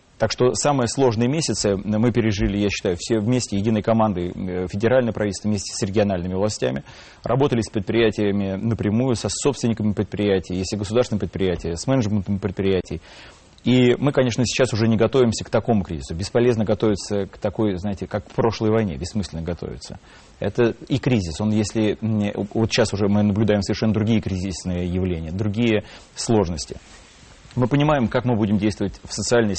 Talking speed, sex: 160 wpm, male